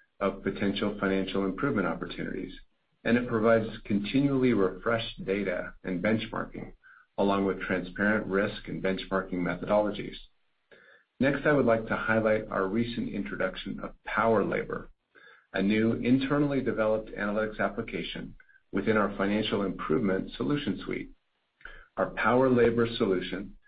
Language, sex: English, male